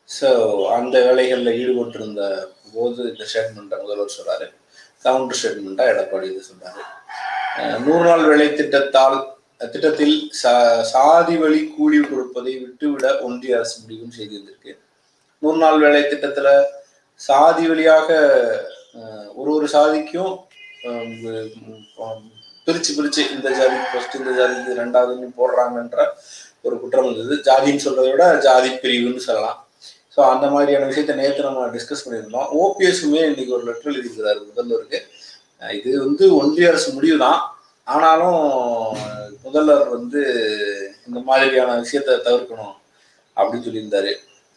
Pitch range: 120-170 Hz